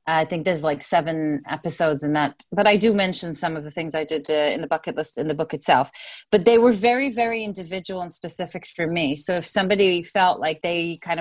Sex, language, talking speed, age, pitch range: female, English, 230 wpm, 30-49, 165-210 Hz